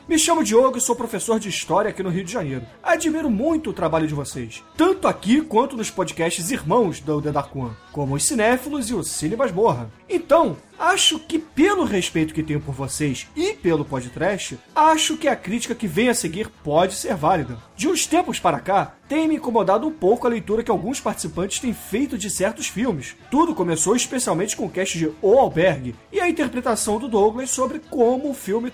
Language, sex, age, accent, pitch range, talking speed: Portuguese, male, 30-49, Brazilian, 175-265 Hz, 200 wpm